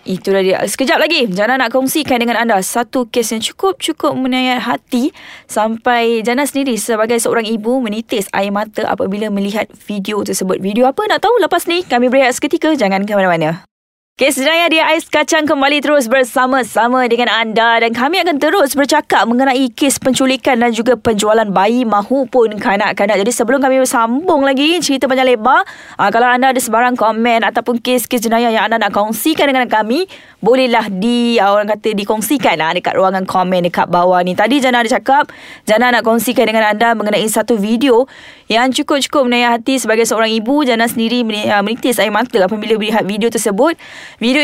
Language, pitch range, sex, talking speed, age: Malay, 220-270 Hz, female, 170 wpm, 20-39